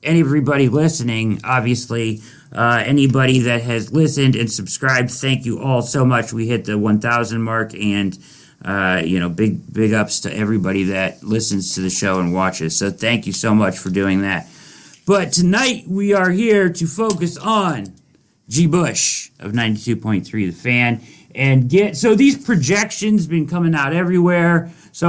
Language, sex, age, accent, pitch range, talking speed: English, male, 50-69, American, 120-180 Hz, 165 wpm